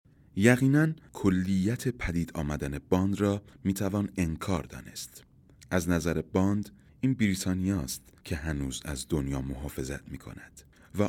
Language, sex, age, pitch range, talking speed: Persian, male, 30-49, 80-105 Hz, 130 wpm